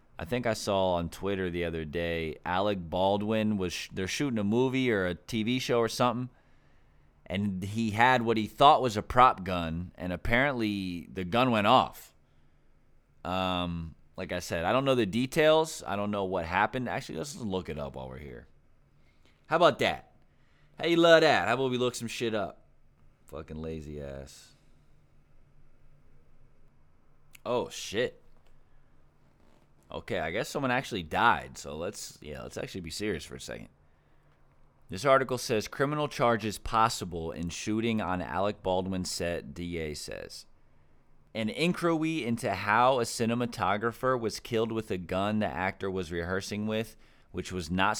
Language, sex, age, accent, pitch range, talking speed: English, male, 30-49, American, 85-115 Hz, 160 wpm